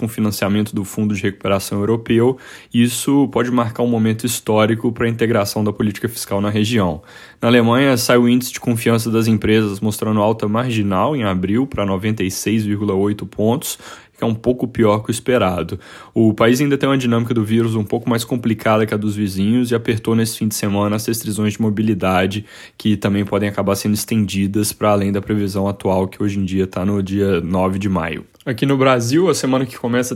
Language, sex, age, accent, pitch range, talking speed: Portuguese, male, 10-29, Brazilian, 100-115 Hz, 200 wpm